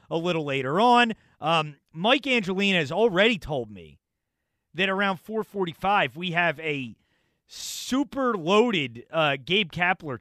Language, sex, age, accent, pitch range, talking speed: English, male, 30-49, American, 130-210 Hz, 130 wpm